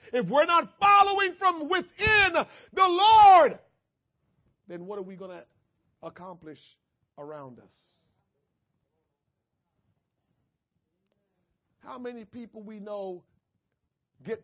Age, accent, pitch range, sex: 50-69, American, 185-295 Hz, male